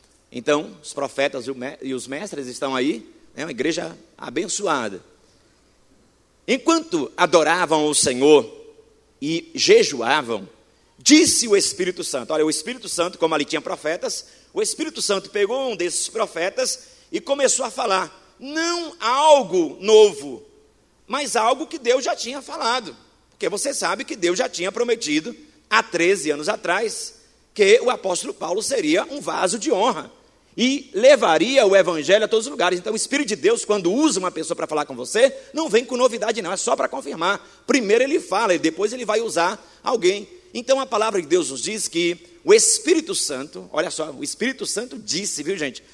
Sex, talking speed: male, 170 wpm